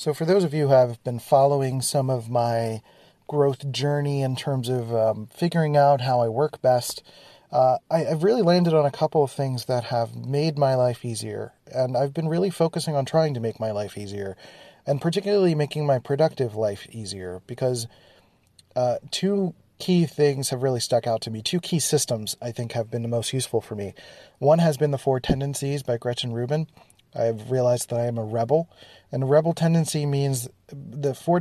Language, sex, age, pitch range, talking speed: English, male, 30-49, 120-150 Hz, 200 wpm